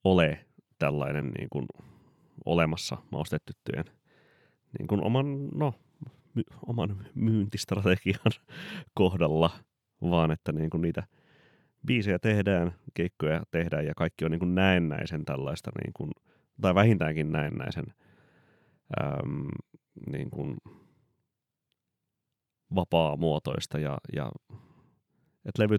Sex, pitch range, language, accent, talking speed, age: male, 75-100 Hz, Finnish, native, 95 wpm, 30-49